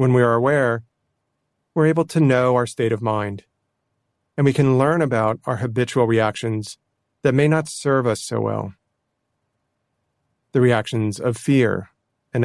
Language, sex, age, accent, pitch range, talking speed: English, male, 40-59, American, 110-130 Hz, 155 wpm